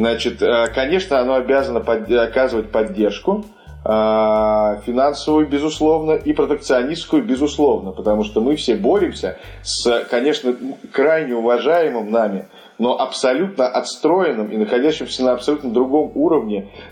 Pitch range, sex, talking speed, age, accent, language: 110-135 Hz, male, 105 wpm, 20-39, native, Russian